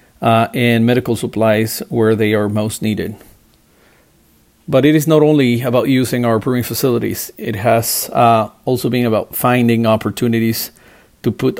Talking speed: 150 wpm